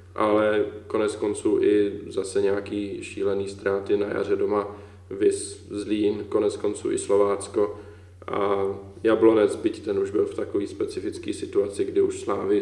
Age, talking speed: 20-39, 145 wpm